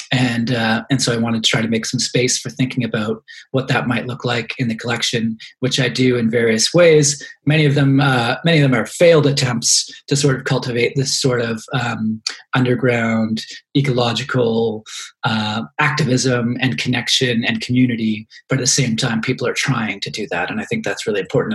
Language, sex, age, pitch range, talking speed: English, male, 30-49, 120-135 Hz, 200 wpm